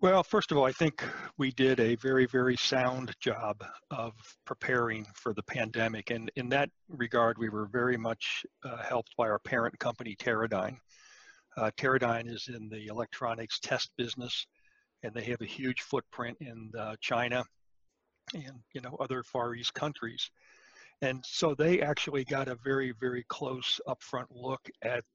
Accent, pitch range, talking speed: American, 115-130 Hz, 165 wpm